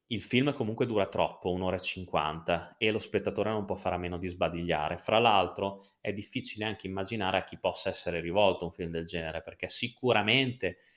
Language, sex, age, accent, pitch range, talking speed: Italian, male, 20-39, native, 90-110 Hz, 190 wpm